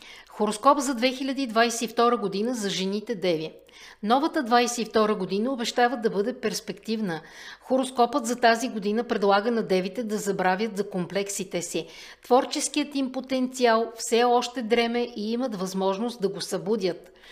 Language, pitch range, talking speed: Bulgarian, 205-250 Hz, 130 wpm